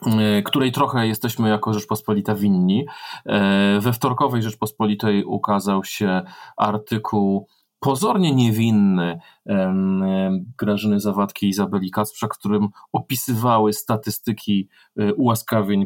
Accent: native